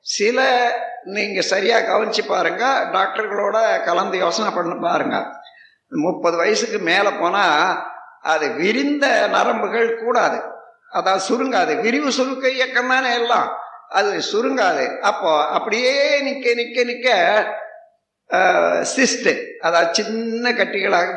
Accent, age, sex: native, 60-79, male